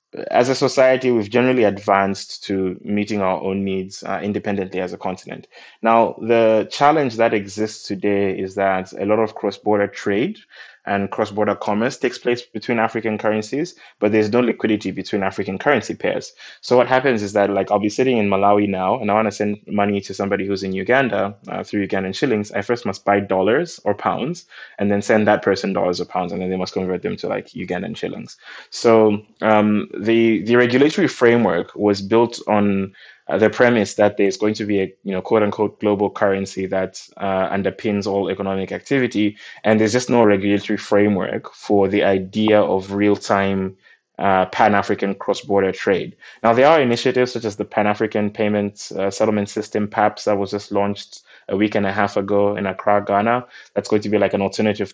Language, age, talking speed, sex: English, 20-39, 190 wpm, male